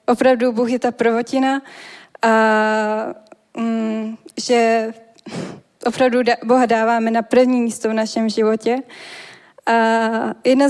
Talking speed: 105 wpm